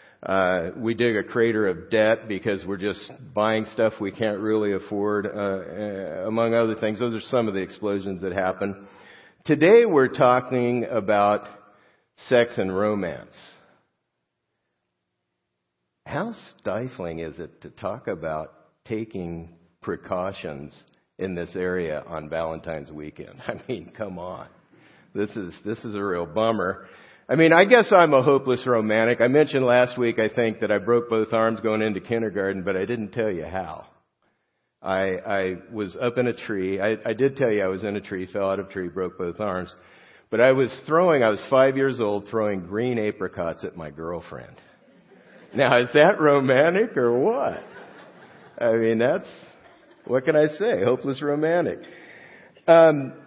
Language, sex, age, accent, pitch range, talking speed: English, male, 50-69, American, 95-125 Hz, 160 wpm